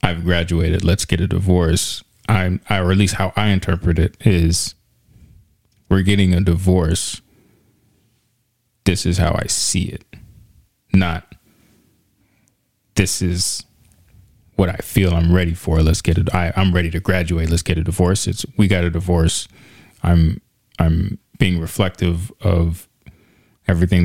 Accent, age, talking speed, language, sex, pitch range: American, 20-39, 145 wpm, English, male, 85-100 Hz